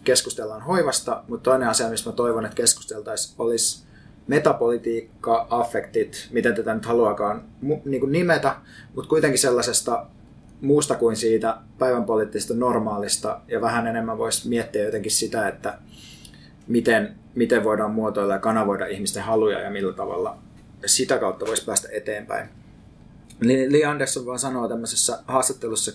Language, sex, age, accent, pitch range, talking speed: Finnish, male, 20-39, native, 115-140 Hz, 130 wpm